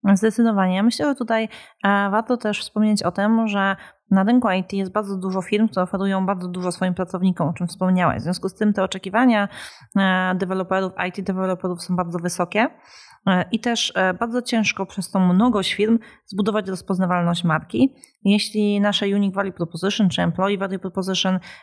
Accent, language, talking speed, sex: native, Polish, 160 wpm, female